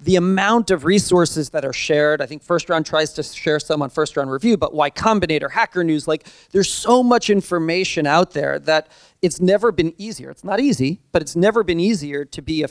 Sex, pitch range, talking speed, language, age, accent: male, 155-190 Hz, 220 wpm, English, 40-59, American